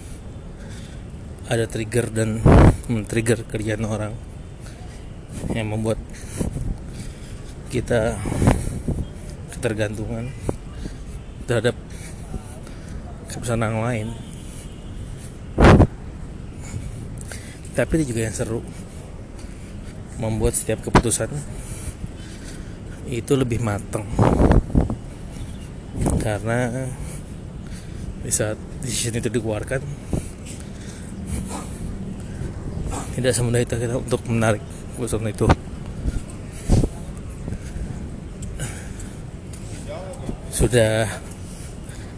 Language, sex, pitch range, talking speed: Indonesian, male, 100-120 Hz, 60 wpm